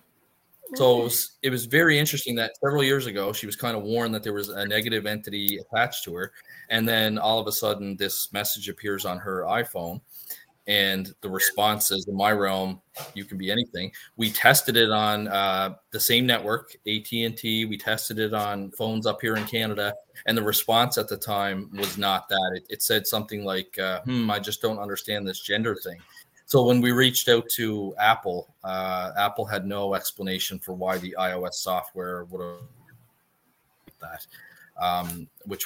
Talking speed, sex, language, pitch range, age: 185 wpm, male, English, 100-110 Hz, 30-49